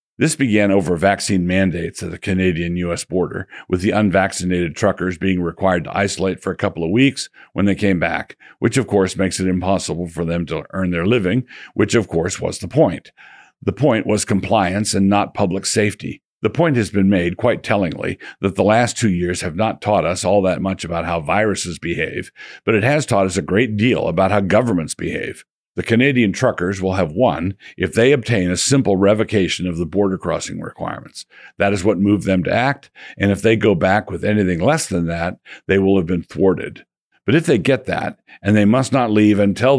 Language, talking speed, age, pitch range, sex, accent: English, 205 wpm, 50-69, 90-105 Hz, male, American